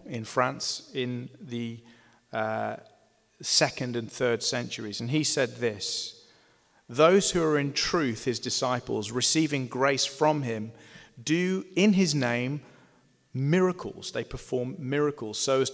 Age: 40-59